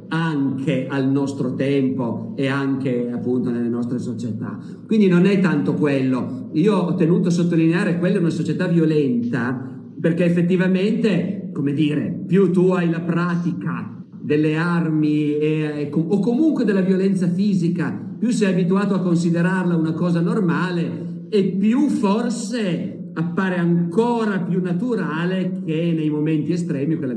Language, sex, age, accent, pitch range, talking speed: Italian, male, 50-69, native, 150-190 Hz, 135 wpm